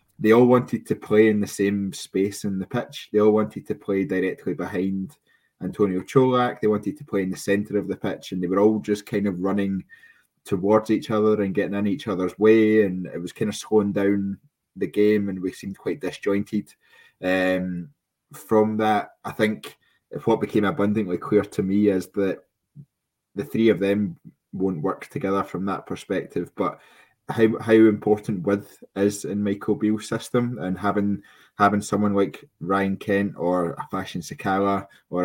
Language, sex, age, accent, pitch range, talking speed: English, male, 20-39, British, 95-105 Hz, 185 wpm